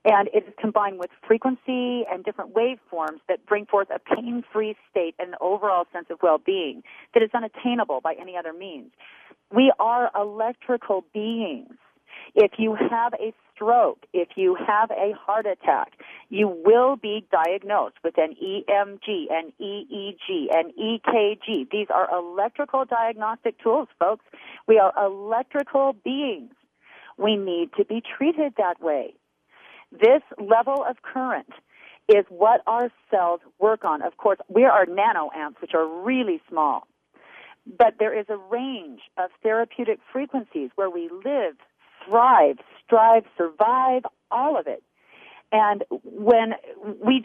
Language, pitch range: English, 200-255 Hz